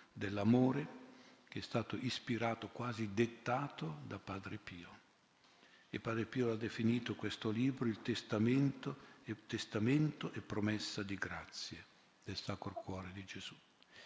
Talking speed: 130 wpm